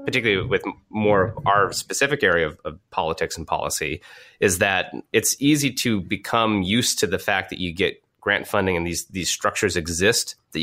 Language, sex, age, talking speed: English, male, 30-49, 185 wpm